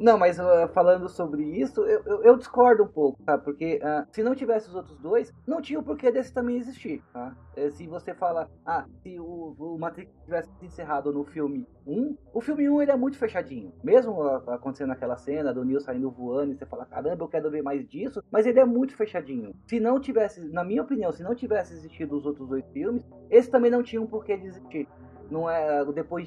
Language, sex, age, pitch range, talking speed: Portuguese, male, 20-39, 145-220 Hz, 215 wpm